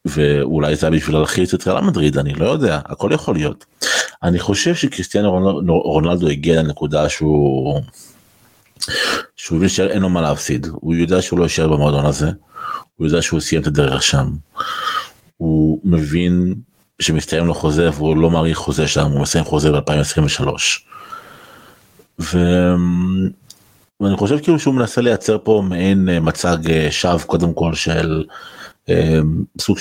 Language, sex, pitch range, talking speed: Hebrew, male, 80-95 Hz, 140 wpm